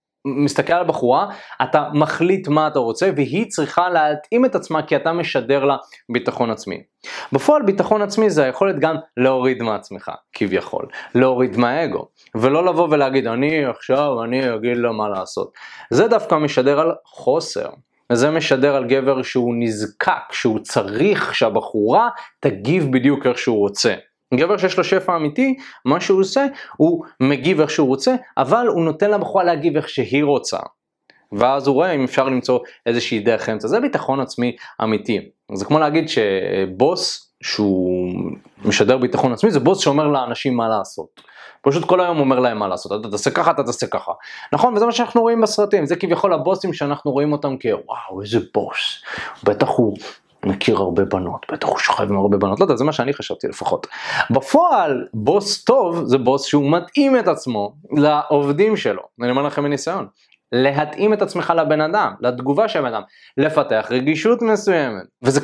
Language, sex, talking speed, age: Hebrew, male, 125 wpm, 20-39